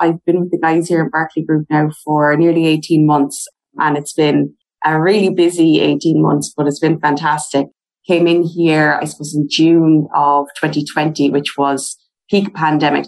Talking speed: 180 wpm